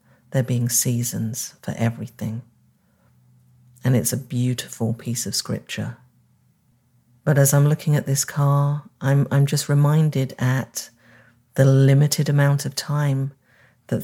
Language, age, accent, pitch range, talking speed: English, 40-59, British, 125-145 Hz, 130 wpm